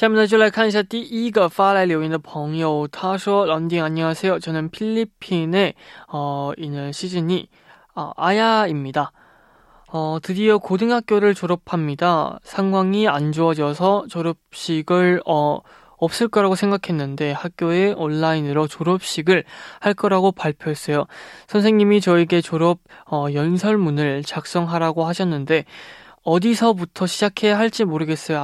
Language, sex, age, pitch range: Korean, male, 20-39, 155-190 Hz